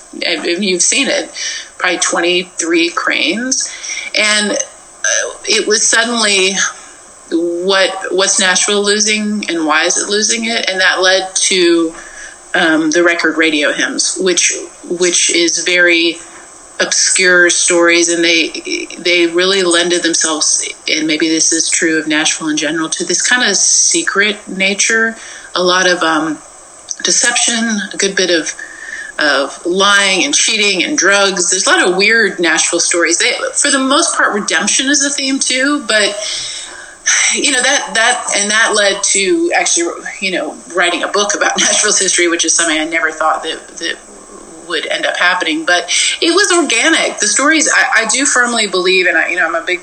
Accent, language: American, English